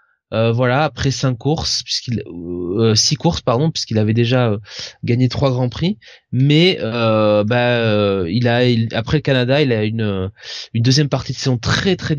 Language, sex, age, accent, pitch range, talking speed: French, male, 20-39, French, 110-150 Hz, 190 wpm